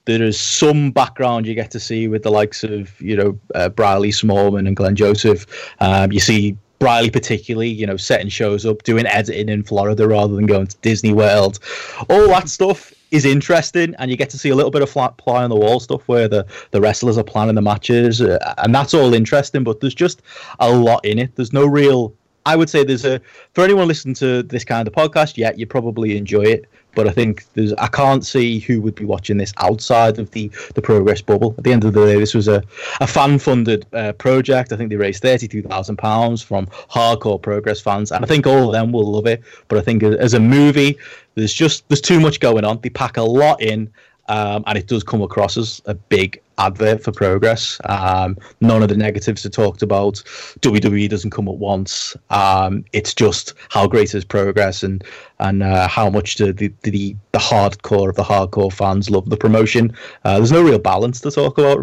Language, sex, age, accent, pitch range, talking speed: English, male, 20-39, British, 105-125 Hz, 220 wpm